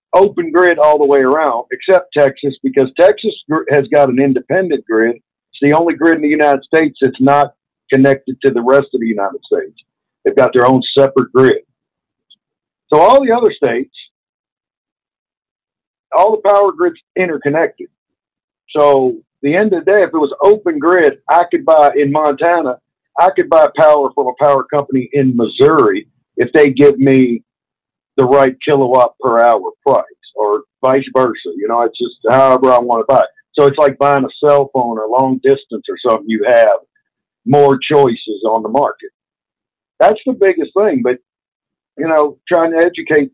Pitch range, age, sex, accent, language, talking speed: 130-175 Hz, 50-69, male, American, English, 175 wpm